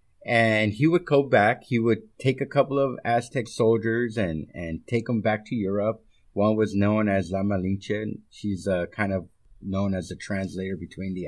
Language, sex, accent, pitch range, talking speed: English, male, American, 95-125 Hz, 190 wpm